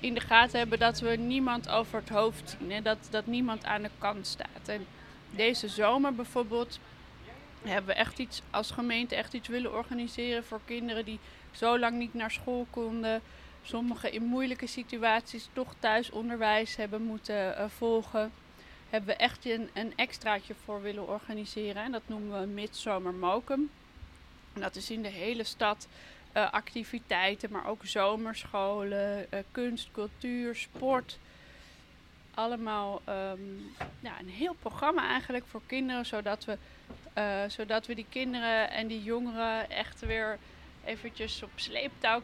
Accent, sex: Dutch, female